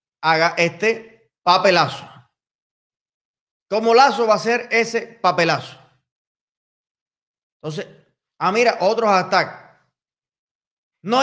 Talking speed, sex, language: 85 wpm, male, Spanish